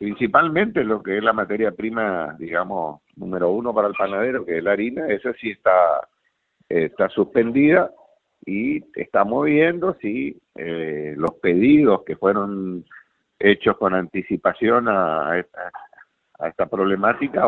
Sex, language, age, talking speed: male, Spanish, 50-69, 135 wpm